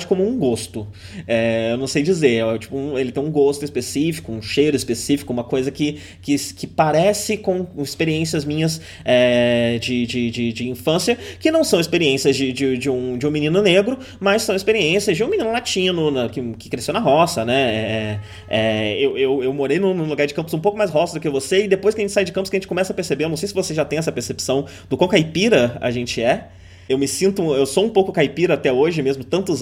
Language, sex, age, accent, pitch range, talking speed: Portuguese, male, 20-39, Brazilian, 120-175 Hz, 235 wpm